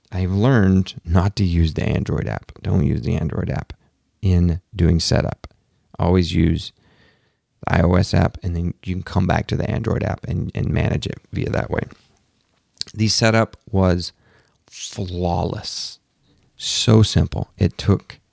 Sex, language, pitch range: male, English, 90-110 Hz